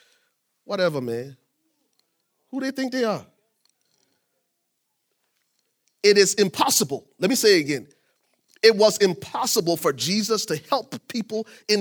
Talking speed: 120 wpm